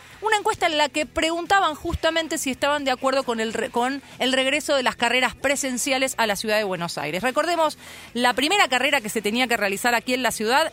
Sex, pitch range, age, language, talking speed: female, 210-275 Hz, 30-49, Spanish, 225 wpm